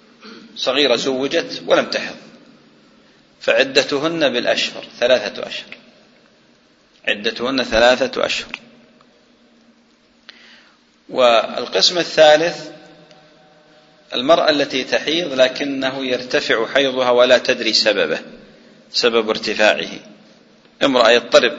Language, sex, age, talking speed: English, male, 40-59, 70 wpm